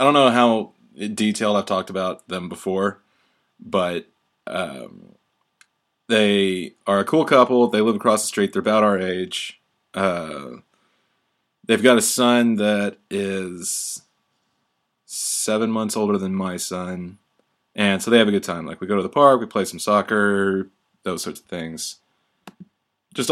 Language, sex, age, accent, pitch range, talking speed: English, male, 20-39, American, 95-120 Hz, 155 wpm